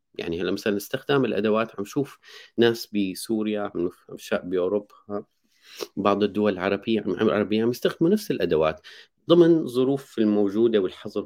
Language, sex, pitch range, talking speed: Arabic, male, 95-120 Hz, 130 wpm